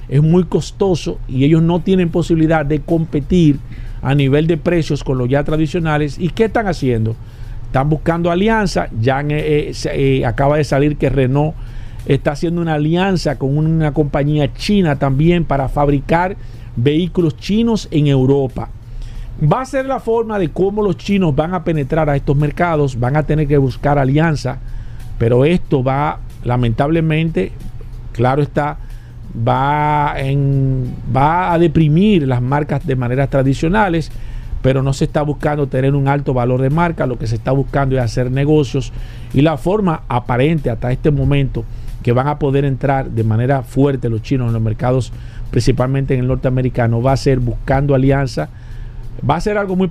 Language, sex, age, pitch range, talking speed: Spanish, male, 50-69, 125-155 Hz, 165 wpm